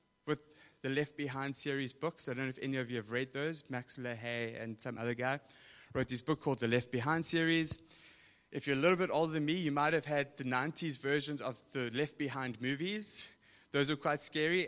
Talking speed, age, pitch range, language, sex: 220 wpm, 20-39, 130-160 Hz, English, male